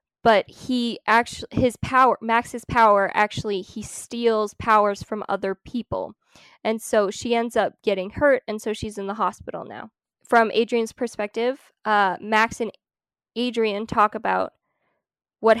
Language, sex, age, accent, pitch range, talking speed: English, female, 10-29, American, 200-230 Hz, 145 wpm